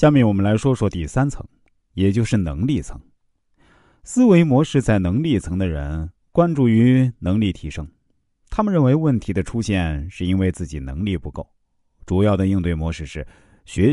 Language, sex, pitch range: Chinese, male, 85-125 Hz